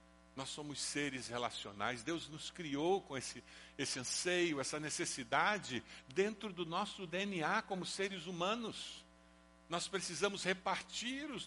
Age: 60-79